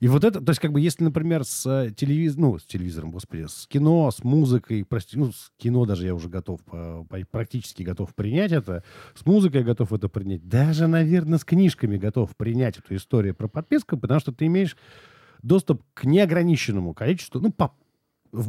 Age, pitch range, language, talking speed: 50-69, 105-160 Hz, Russian, 190 wpm